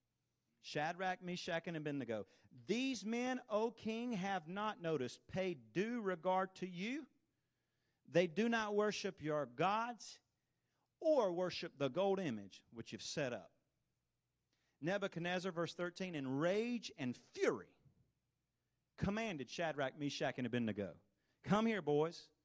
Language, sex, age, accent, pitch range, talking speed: English, male, 40-59, American, 130-195 Hz, 125 wpm